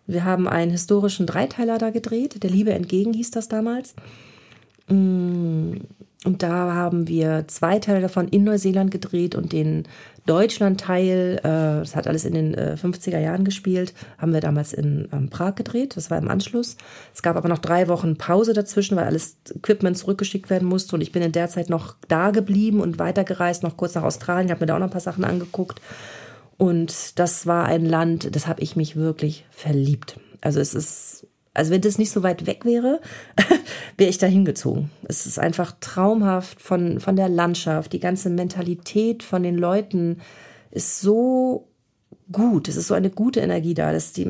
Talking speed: 185 wpm